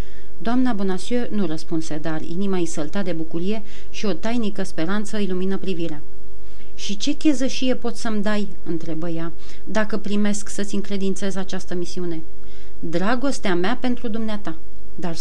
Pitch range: 180-225 Hz